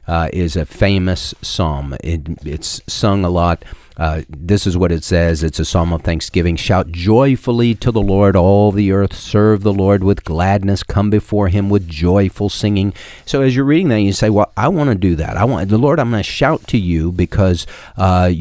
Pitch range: 85-105 Hz